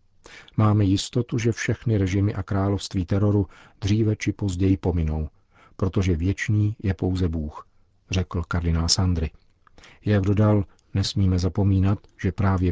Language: Czech